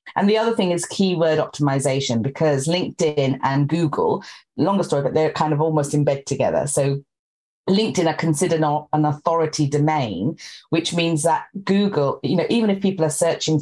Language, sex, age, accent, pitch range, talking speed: English, female, 30-49, British, 145-195 Hz, 165 wpm